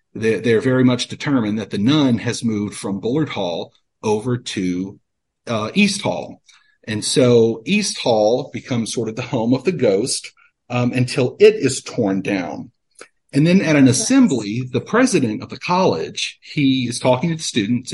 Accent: American